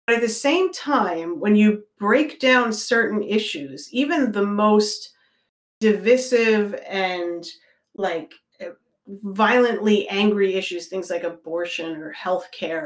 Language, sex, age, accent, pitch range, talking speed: English, female, 30-49, American, 185-255 Hz, 120 wpm